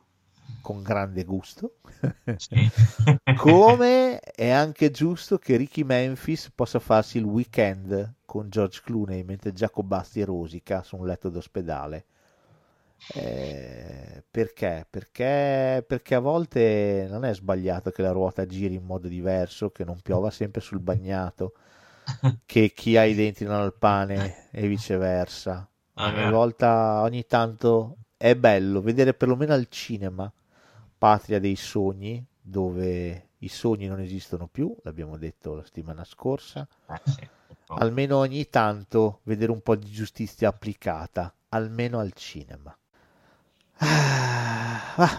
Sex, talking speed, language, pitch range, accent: male, 125 wpm, Italian, 95-120 Hz, native